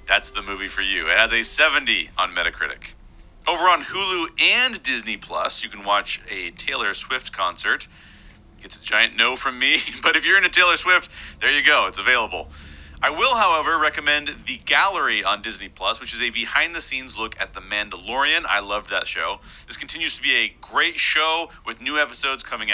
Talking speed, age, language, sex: 195 wpm, 40-59, English, male